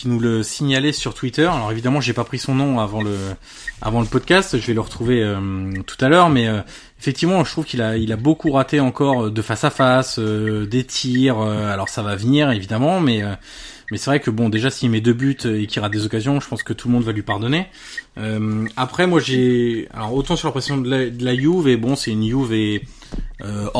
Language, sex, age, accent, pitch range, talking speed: French, male, 20-39, French, 110-135 Hz, 235 wpm